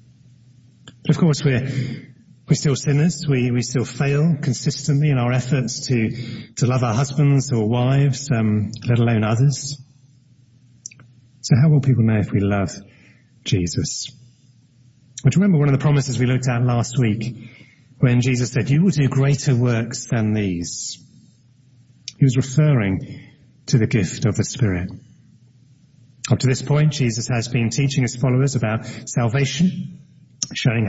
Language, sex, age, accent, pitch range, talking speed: English, male, 30-49, British, 120-140 Hz, 155 wpm